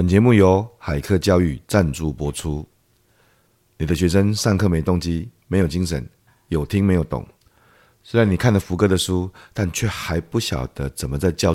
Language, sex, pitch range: Chinese, male, 75-95 Hz